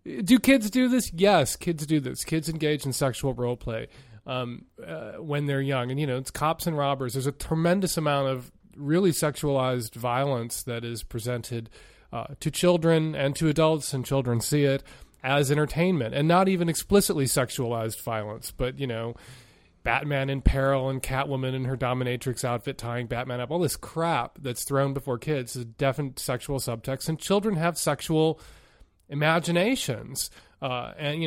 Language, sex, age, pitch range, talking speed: English, male, 30-49, 125-160 Hz, 170 wpm